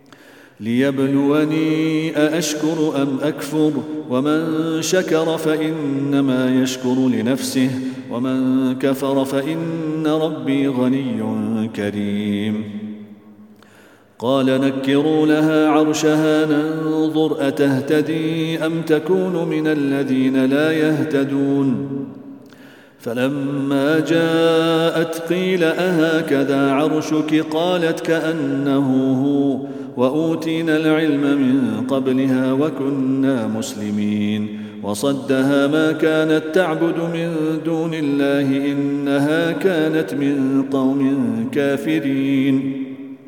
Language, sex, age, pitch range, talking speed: English, male, 40-59, 135-155 Hz, 70 wpm